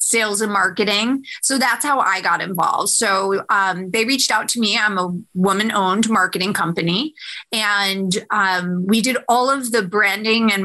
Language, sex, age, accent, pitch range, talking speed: English, female, 20-39, American, 195-250 Hz, 170 wpm